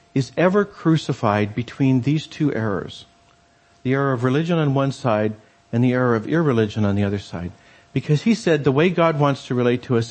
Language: English